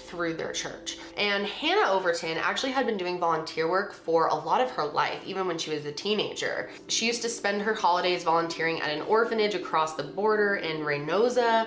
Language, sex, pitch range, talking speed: English, female, 165-215 Hz, 200 wpm